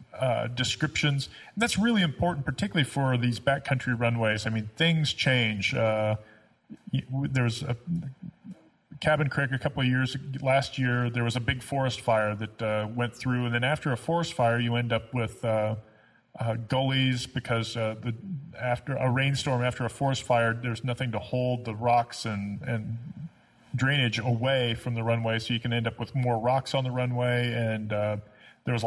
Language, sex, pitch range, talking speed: English, male, 115-140 Hz, 185 wpm